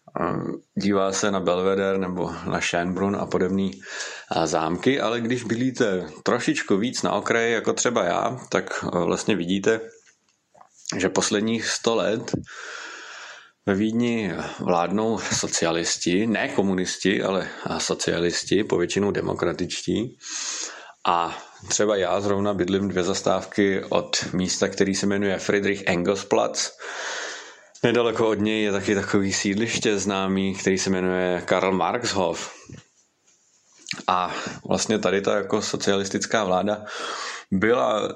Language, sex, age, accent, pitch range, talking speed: Czech, male, 30-49, native, 95-110 Hz, 115 wpm